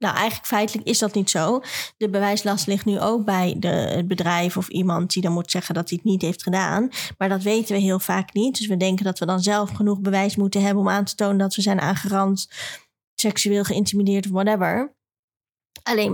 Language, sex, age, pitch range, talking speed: Dutch, female, 20-39, 190-220 Hz, 215 wpm